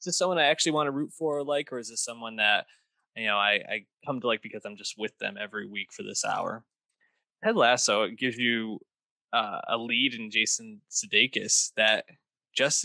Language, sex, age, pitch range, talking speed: English, male, 20-39, 115-150 Hz, 210 wpm